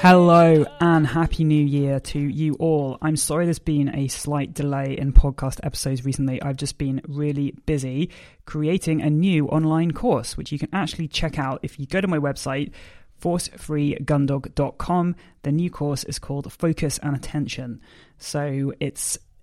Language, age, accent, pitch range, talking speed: English, 20-39, British, 135-155 Hz, 160 wpm